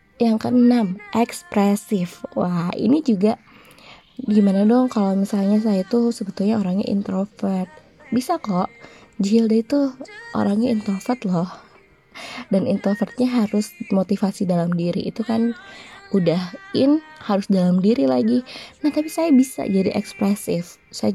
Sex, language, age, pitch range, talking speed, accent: female, Indonesian, 20-39, 190-235 Hz, 120 wpm, native